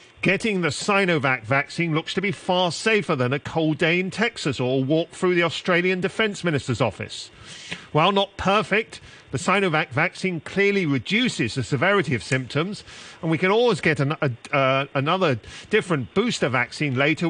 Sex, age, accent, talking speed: male, 40-59, British, 160 wpm